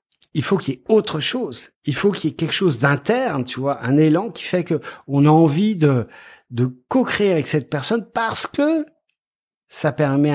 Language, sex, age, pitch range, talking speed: French, male, 50-69, 125-170 Hz, 205 wpm